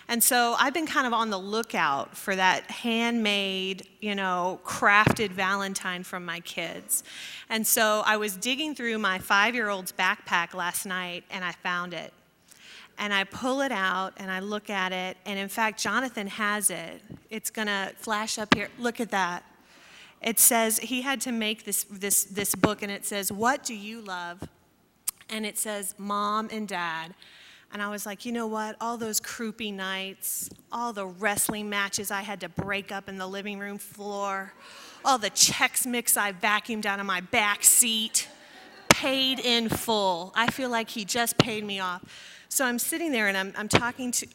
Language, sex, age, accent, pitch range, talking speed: English, female, 30-49, American, 195-235 Hz, 185 wpm